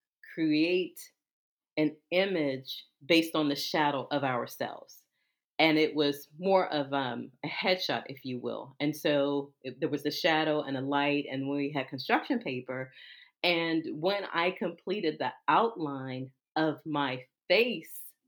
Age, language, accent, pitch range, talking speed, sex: 40-59, English, American, 145-210 Hz, 145 wpm, female